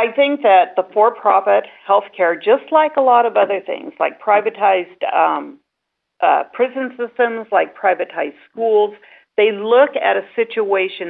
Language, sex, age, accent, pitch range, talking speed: English, female, 50-69, American, 170-230 Hz, 150 wpm